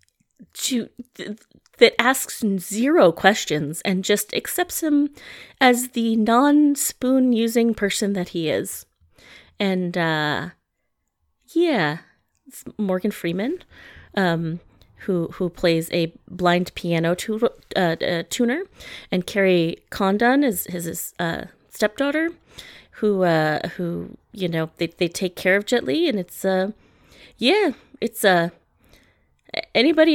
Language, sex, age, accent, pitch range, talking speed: English, female, 30-49, American, 170-245 Hz, 125 wpm